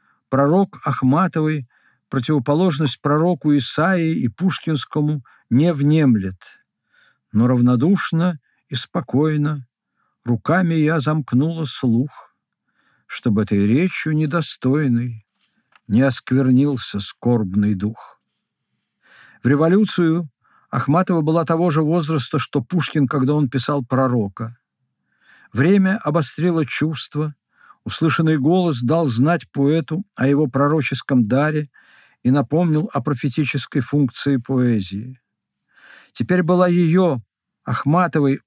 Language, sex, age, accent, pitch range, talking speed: Russian, male, 50-69, native, 130-165 Hz, 95 wpm